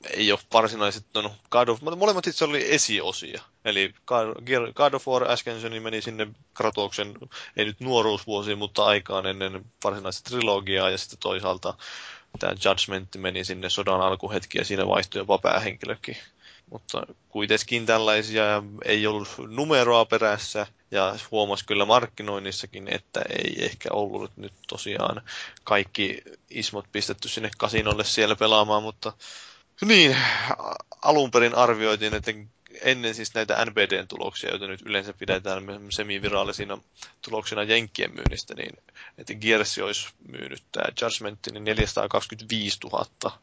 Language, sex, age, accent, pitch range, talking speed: Finnish, male, 20-39, native, 100-115 Hz, 125 wpm